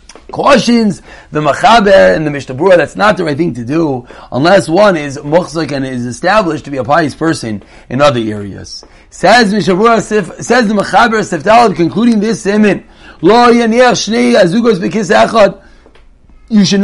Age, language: 40-59, English